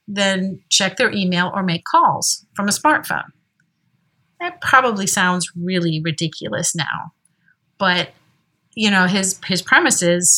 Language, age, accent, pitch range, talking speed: English, 50-69, American, 175-230 Hz, 135 wpm